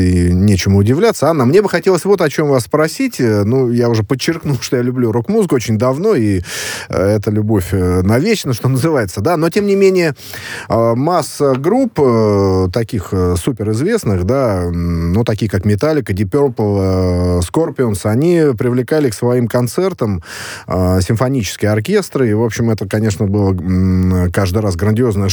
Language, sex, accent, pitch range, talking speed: Russian, male, native, 105-140 Hz, 145 wpm